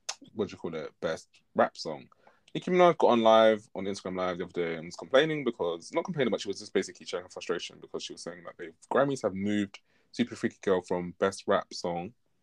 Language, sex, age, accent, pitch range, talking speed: English, male, 20-39, British, 90-120 Hz, 230 wpm